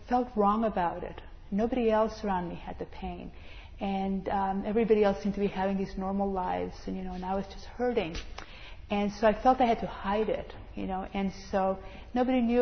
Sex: female